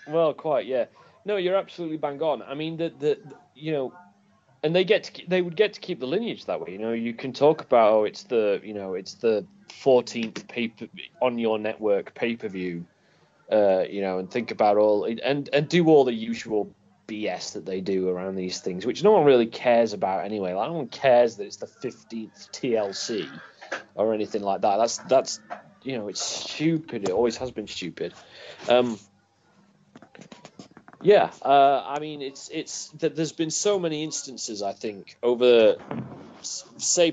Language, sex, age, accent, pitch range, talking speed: English, male, 30-49, British, 105-155 Hz, 185 wpm